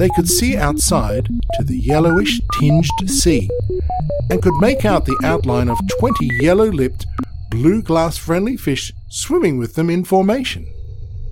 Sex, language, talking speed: male, English, 150 wpm